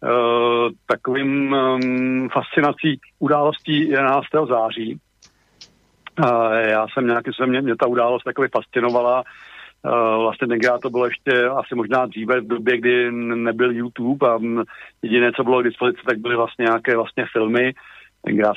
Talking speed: 140 wpm